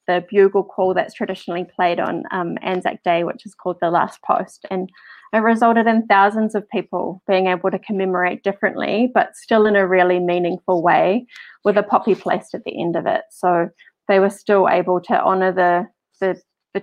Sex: female